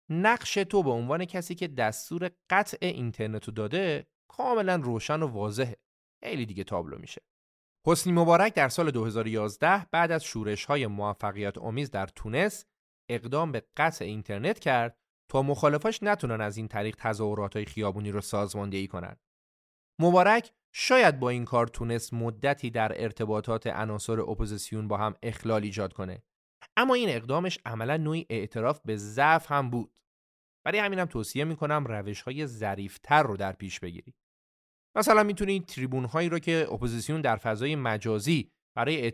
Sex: male